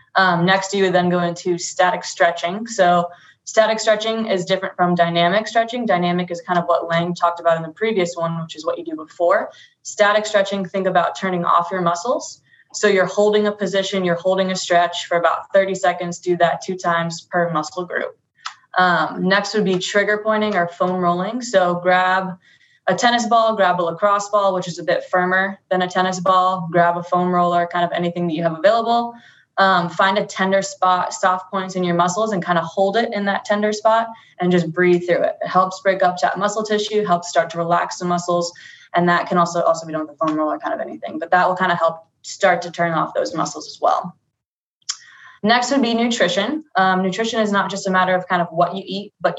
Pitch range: 175-205 Hz